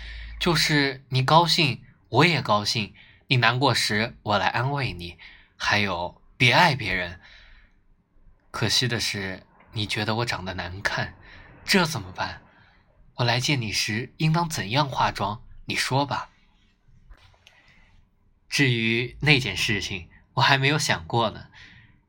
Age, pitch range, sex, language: 20-39, 100-135 Hz, male, Chinese